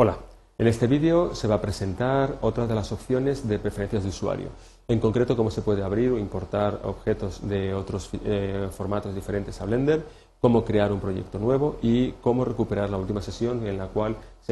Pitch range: 100-120 Hz